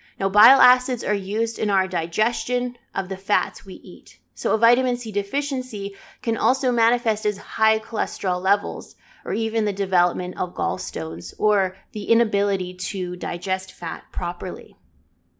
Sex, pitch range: female, 185-230 Hz